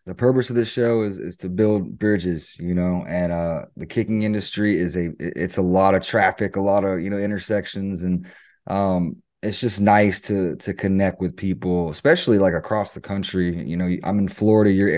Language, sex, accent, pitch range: English, male, American, 95-110 Hz